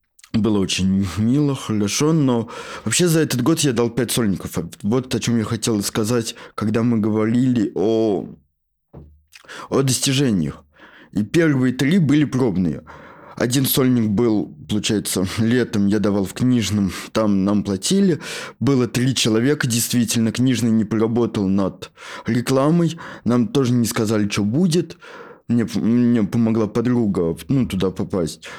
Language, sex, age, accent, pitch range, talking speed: Russian, male, 20-39, native, 105-145 Hz, 135 wpm